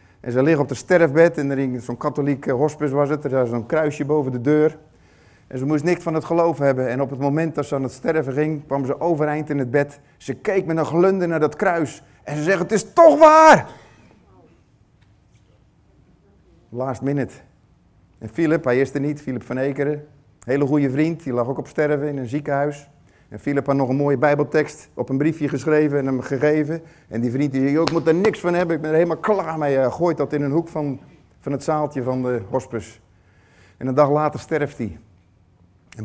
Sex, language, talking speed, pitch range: male, Dutch, 220 wpm, 125-155 Hz